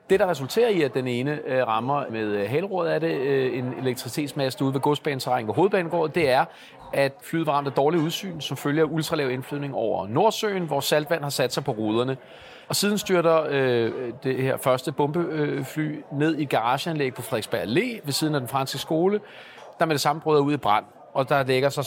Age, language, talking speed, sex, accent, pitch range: 40-59, Danish, 195 wpm, male, native, 135-170 Hz